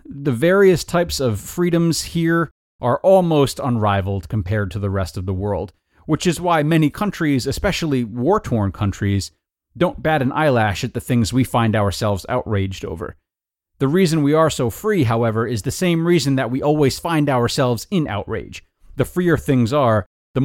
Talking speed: 175 wpm